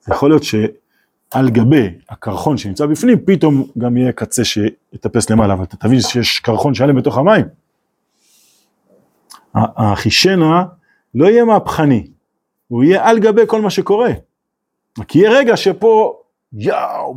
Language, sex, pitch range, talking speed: Hebrew, male, 115-185 Hz, 135 wpm